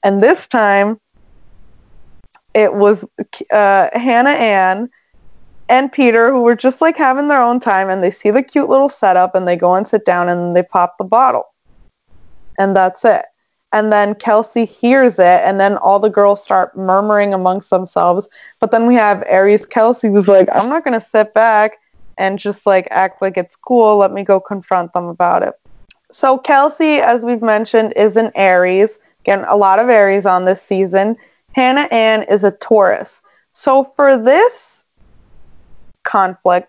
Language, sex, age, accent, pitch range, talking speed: English, female, 20-39, American, 190-240 Hz, 175 wpm